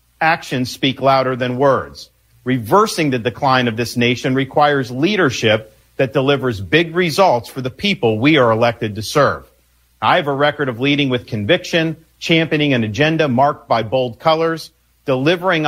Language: English